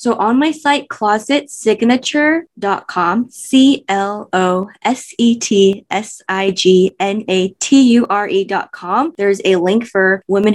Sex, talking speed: female, 65 wpm